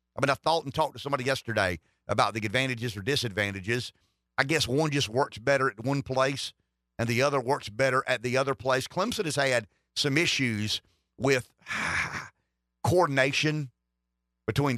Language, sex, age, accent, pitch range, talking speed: English, male, 50-69, American, 105-140 Hz, 160 wpm